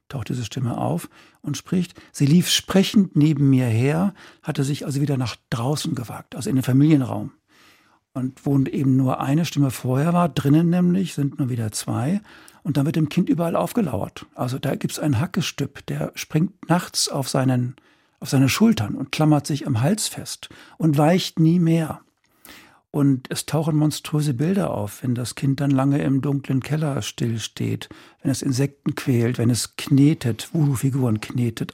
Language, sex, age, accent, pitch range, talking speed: German, male, 60-79, German, 130-155 Hz, 175 wpm